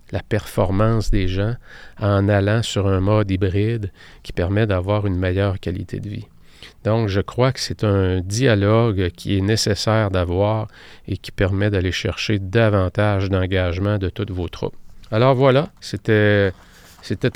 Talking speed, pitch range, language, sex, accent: 150 wpm, 100-115 Hz, French, male, Canadian